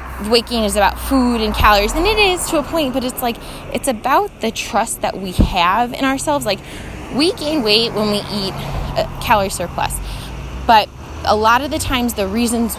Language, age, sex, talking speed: English, 20-39, female, 200 wpm